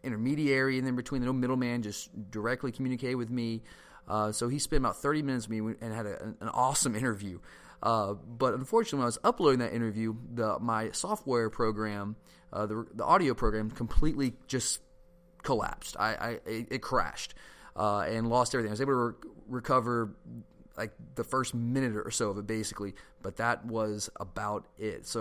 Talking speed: 190 wpm